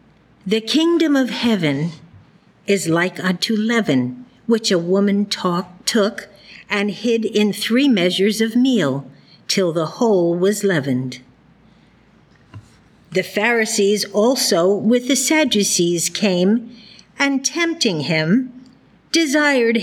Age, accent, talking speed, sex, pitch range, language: 50-69, American, 105 wpm, female, 190-240 Hz, English